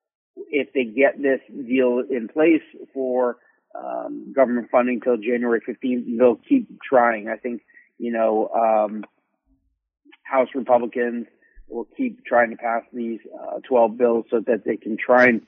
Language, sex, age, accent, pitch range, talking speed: English, male, 50-69, American, 110-125 Hz, 150 wpm